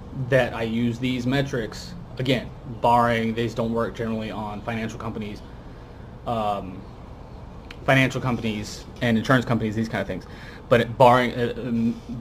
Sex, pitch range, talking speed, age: male, 110-120 Hz, 140 wpm, 30-49